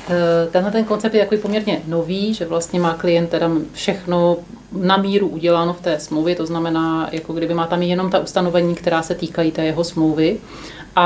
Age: 30-49